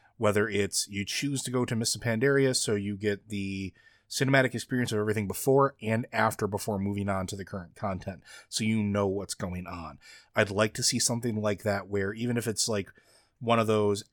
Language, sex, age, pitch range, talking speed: English, male, 30-49, 100-115 Hz, 205 wpm